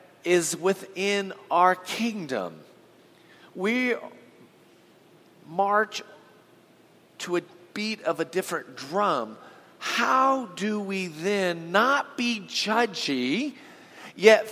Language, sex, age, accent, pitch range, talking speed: English, male, 40-59, American, 160-220 Hz, 85 wpm